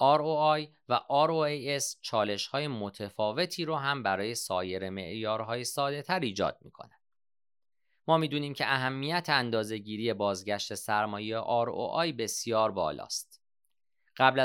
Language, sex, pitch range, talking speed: Persian, male, 100-135 Hz, 120 wpm